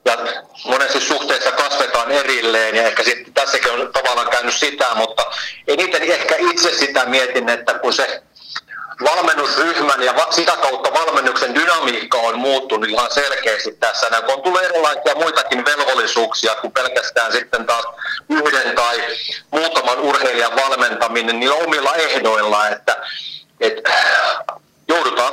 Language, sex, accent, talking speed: Finnish, male, native, 135 wpm